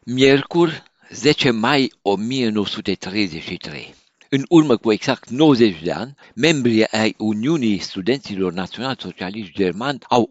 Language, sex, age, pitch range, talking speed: Romanian, male, 60-79, 90-115 Hz, 110 wpm